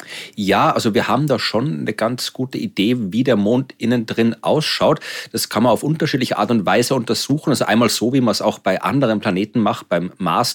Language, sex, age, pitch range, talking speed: German, male, 40-59, 105-135 Hz, 215 wpm